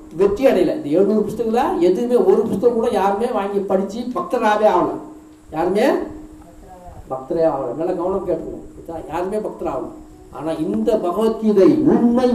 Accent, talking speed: native, 55 wpm